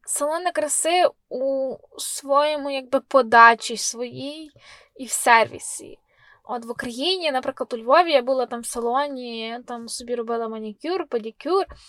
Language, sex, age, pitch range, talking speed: Ukrainian, female, 10-29, 245-310 Hz, 130 wpm